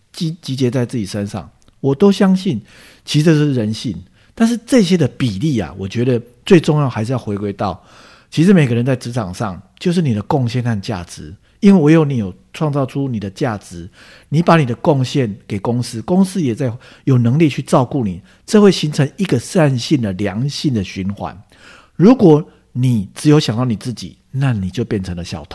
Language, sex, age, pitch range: English, male, 50-69, 105-145 Hz